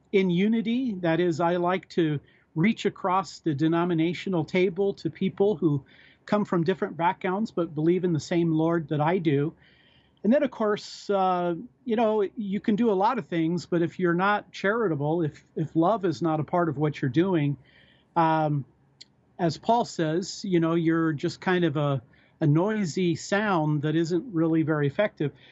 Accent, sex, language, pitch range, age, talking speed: American, male, English, 160-205 Hz, 50-69, 180 wpm